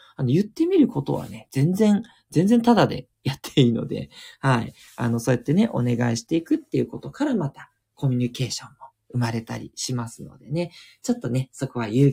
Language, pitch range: Japanese, 130-210 Hz